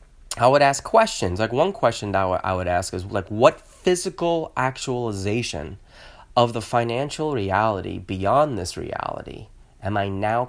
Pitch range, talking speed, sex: 95-120 Hz, 150 wpm, male